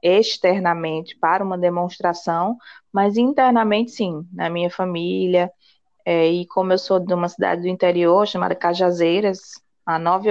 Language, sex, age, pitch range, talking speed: Portuguese, female, 20-39, 185-240 Hz, 140 wpm